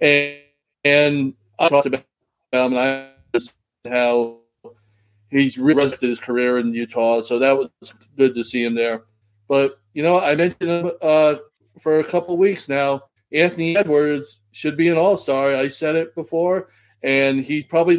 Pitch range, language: 130-175 Hz, English